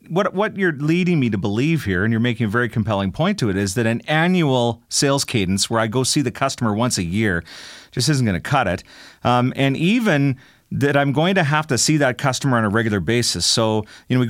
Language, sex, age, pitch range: English, male, 40-59, 115-145 Hz